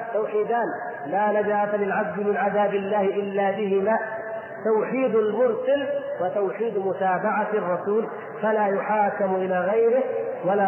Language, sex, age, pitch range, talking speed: Arabic, male, 40-59, 190-230 Hz, 105 wpm